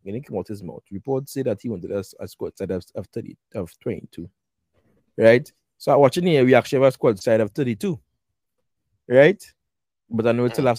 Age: 20-39